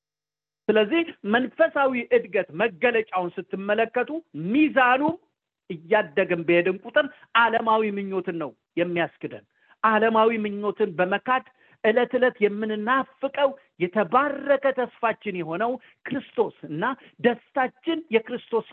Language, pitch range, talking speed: English, 185-275 Hz, 105 wpm